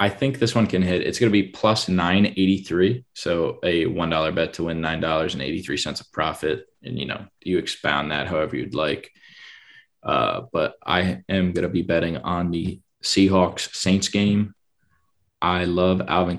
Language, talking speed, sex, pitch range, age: English, 165 wpm, male, 85-100 Hz, 20-39